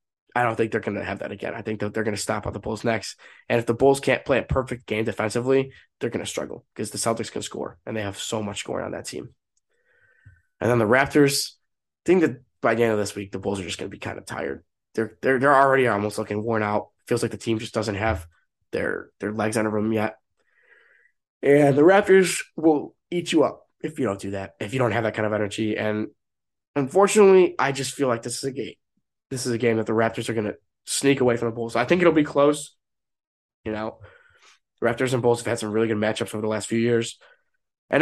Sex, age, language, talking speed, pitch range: male, 20-39, English, 250 wpm, 110-135 Hz